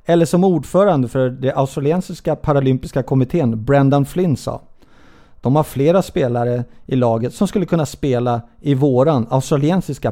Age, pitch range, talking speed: 30-49, 120-160 Hz, 140 wpm